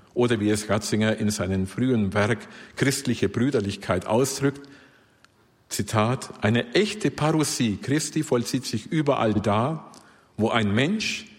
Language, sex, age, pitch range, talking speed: German, male, 50-69, 105-145 Hz, 120 wpm